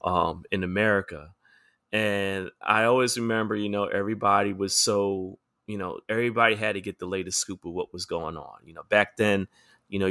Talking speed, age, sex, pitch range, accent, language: 190 wpm, 30-49, male, 95-110 Hz, American, English